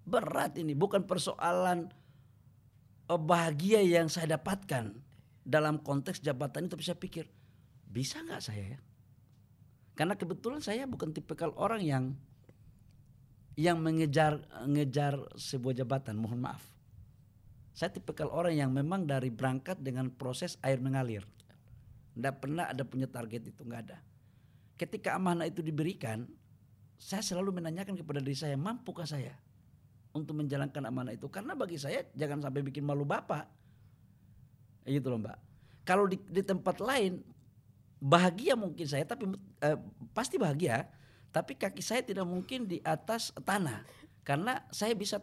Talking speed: 135 wpm